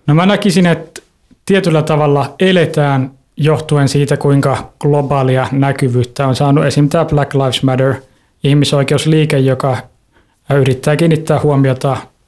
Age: 20-39